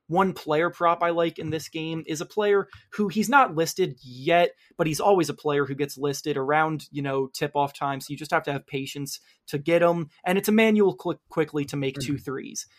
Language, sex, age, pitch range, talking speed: English, male, 20-39, 140-185 Hz, 240 wpm